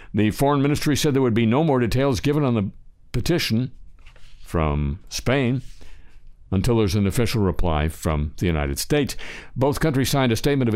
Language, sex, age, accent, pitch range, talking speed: English, male, 60-79, American, 75-120 Hz, 175 wpm